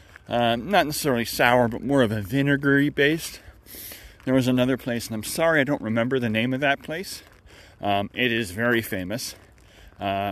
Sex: male